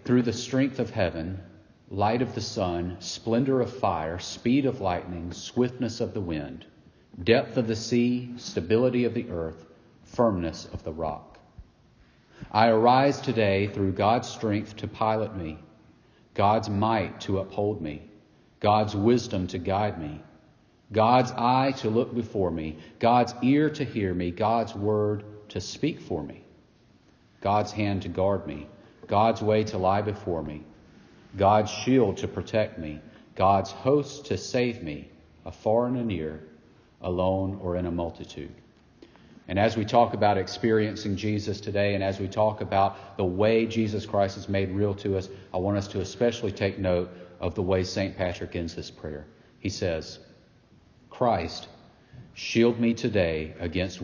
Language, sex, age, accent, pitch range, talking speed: English, male, 40-59, American, 90-115 Hz, 155 wpm